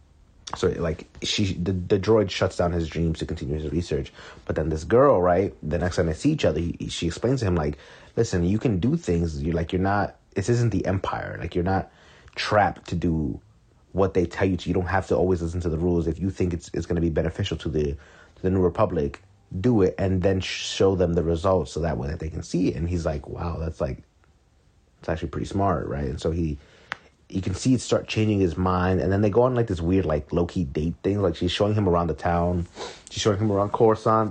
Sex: male